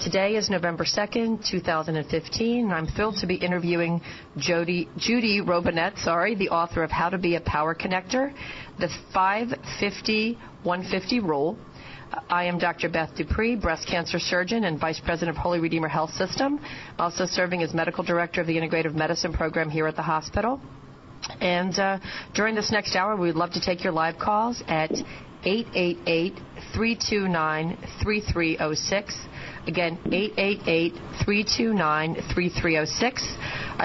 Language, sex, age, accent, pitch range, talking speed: English, female, 40-59, American, 165-195 Hz, 135 wpm